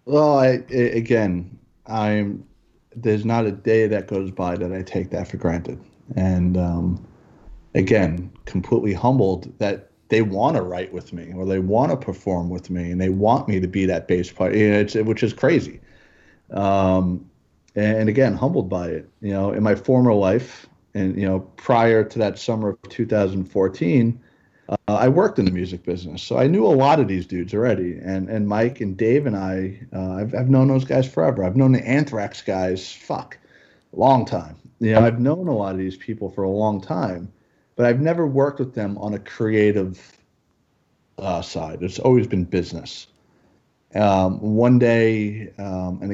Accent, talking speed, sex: American, 190 wpm, male